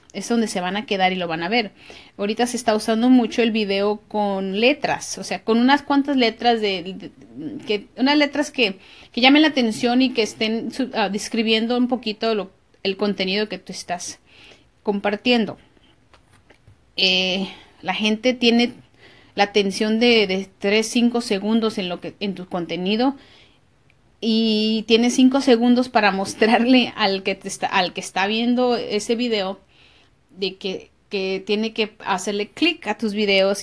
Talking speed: 170 wpm